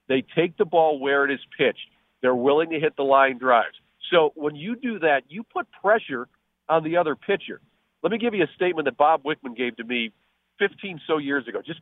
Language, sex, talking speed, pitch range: English, male, 220 wpm, 130-170 Hz